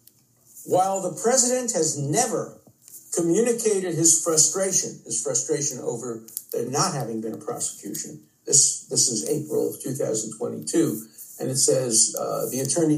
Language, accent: English, American